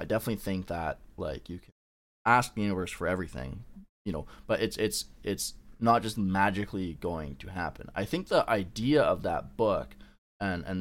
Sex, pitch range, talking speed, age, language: male, 80-110 Hz, 185 wpm, 20-39, English